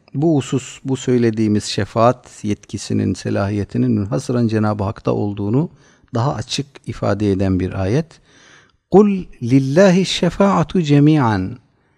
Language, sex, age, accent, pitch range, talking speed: Turkish, male, 50-69, native, 105-150 Hz, 105 wpm